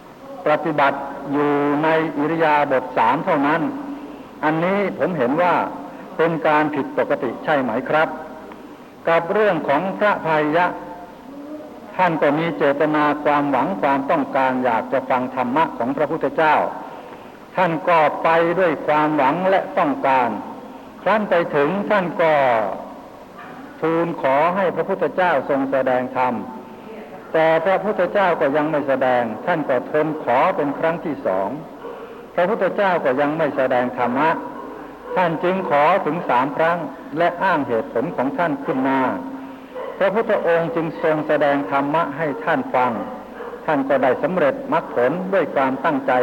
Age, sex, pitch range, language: 60-79, male, 140-170 Hz, Thai